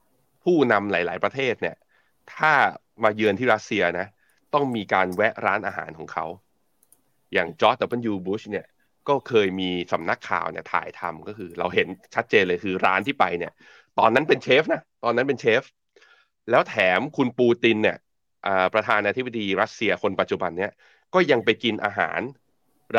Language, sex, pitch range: Thai, male, 95-125 Hz